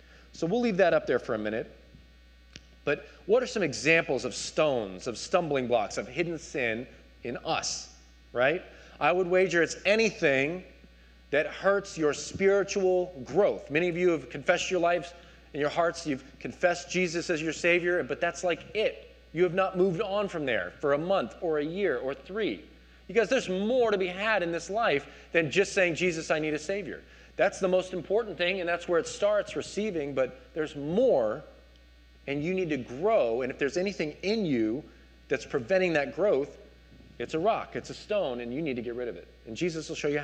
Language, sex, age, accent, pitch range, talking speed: English, male, 30-49, American, 135-185 Hz, 200 wpm